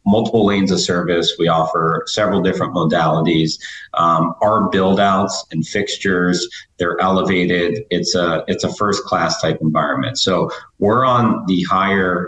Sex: male